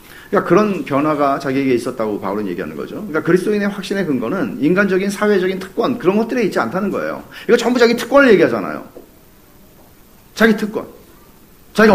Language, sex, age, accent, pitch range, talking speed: English, male, 40-59, Korean, 160-260 Hz, 140 wpm